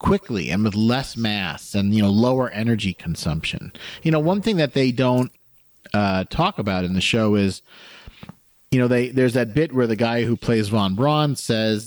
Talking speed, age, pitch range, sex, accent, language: 190 wpm, 40-59, 105-130 Hz, male, American, English